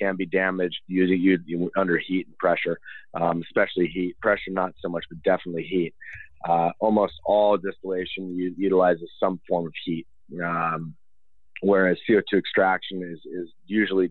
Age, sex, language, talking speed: 30-49, male, English, 150 wpm